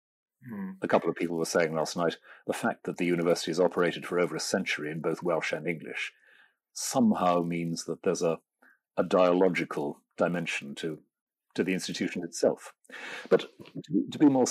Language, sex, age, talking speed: English, male, 50-69, 170 wpm